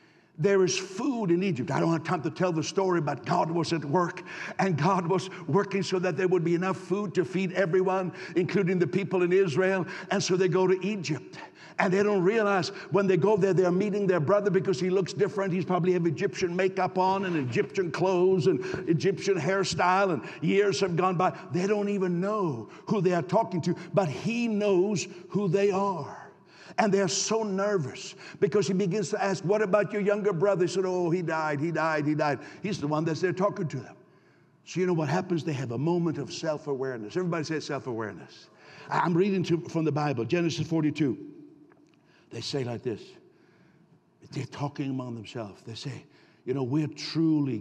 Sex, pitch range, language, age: male, 155-195 Hz, English, 60-79